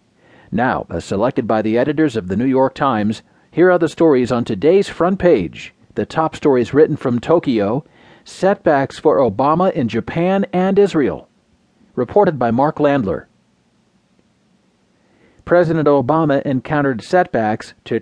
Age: 40-59